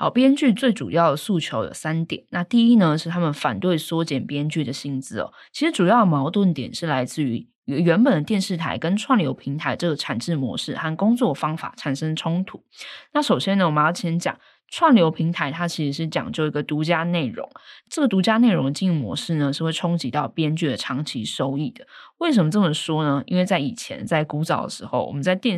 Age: 10-29